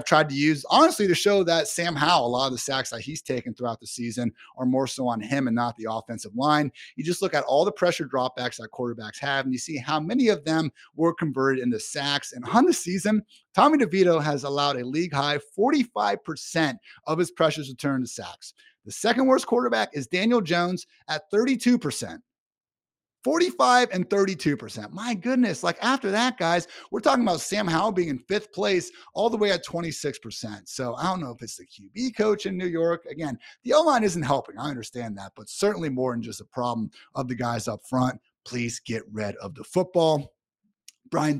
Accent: American